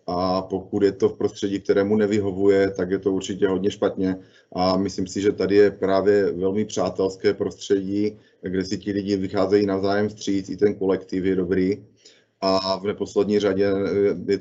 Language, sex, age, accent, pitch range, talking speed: Czech, male, 30-49, native, 95-105 Hz, 170 wpm